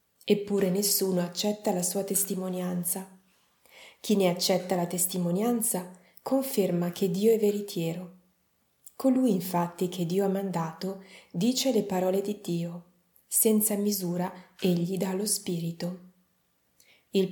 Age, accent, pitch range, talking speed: 30-49, native, 180-215 Hz, 120 wpm